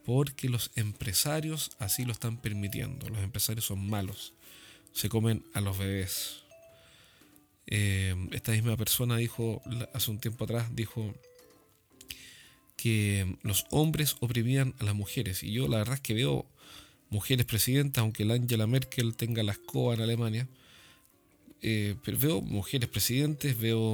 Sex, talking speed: male, 140 wpm